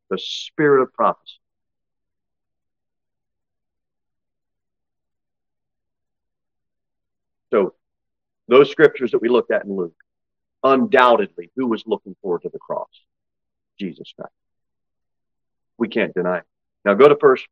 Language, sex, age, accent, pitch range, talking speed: English, male, 50-69, American, 95-125 Hz, 105 wpm